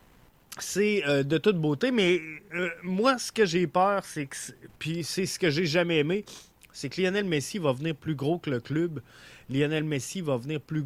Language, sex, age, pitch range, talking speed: French, male, 30-49, 140-180 Hz, 195 wpm